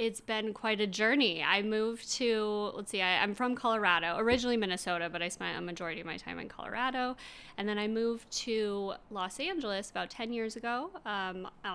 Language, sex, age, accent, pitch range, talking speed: English, female, 20-39, American, 190-230 Hz, 190 wpm